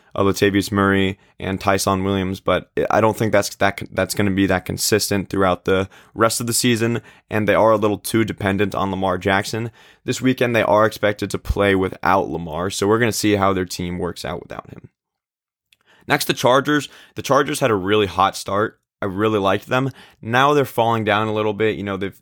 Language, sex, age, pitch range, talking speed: English, male, 20-39, 100-115 Hz, 215 wpm